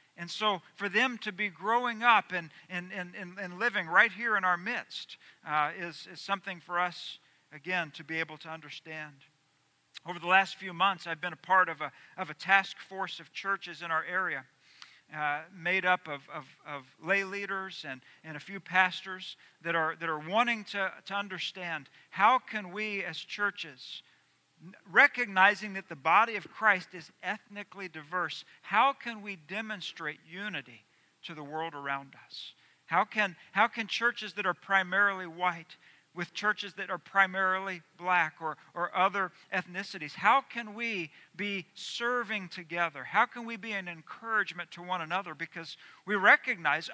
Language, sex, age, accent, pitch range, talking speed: English, male, 50-69, American, 165-205 Hz, 165 wpm